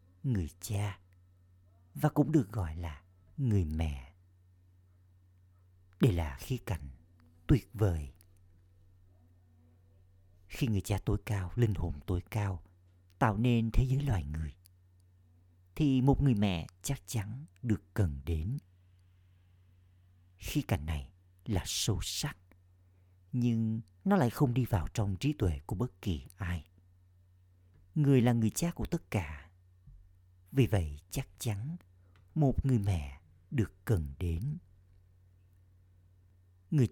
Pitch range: 90-110 Hz